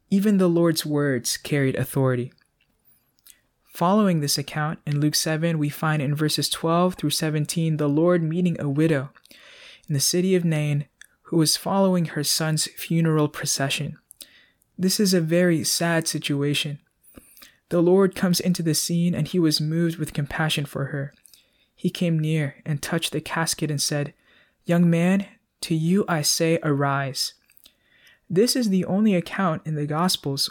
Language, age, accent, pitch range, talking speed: English, 20-39, American, 150-175 Hz, 155 wpm